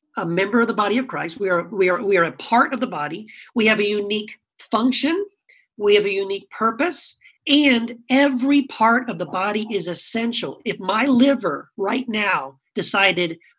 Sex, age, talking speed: male, 40-59, 185 wpm